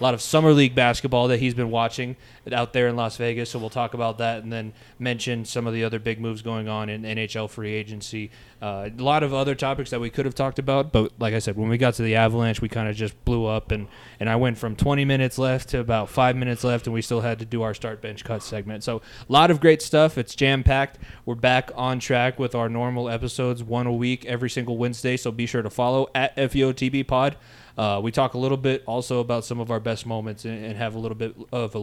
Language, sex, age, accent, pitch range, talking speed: English, male, 20-39, American, 115-130 Hz, 260 wpm